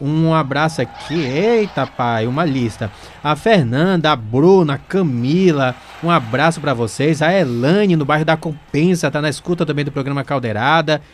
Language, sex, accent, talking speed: Portuguese, male, Brazilian, 160 wpm